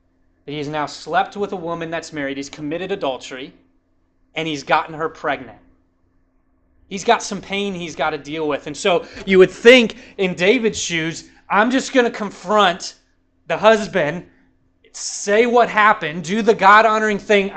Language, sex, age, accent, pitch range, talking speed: English, male, 30-49, American, 165-215 Hz, 160 wpm